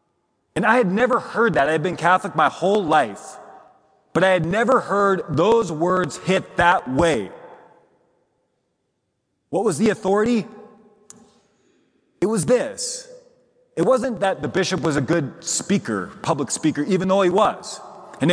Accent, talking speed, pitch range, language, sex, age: American, 150 wpm, 165-220 Hz, English, male, 30-49